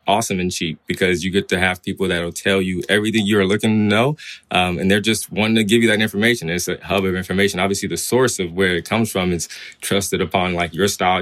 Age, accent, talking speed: 20-39, American, 250 wpm